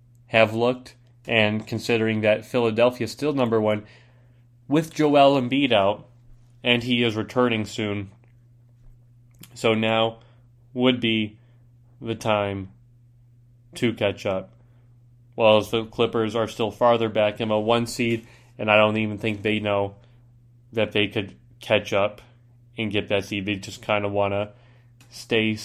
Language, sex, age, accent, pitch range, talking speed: English, male, 20-39, American, 110-120 Hz, 145 wpm